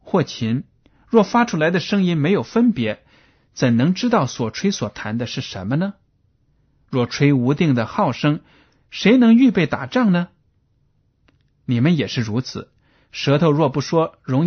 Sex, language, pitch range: male, Chinese, 125-185 Hz